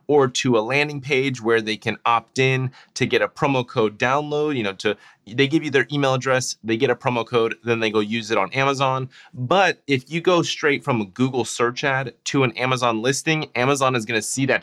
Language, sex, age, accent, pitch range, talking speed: English, male, 30-49, American, 115-140 Hz, 235 wpm